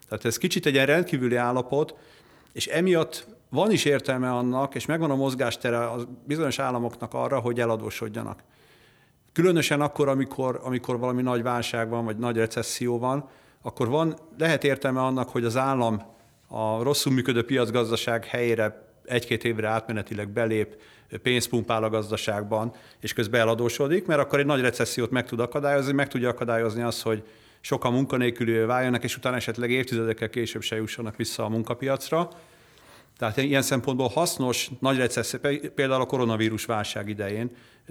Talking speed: 150 wpm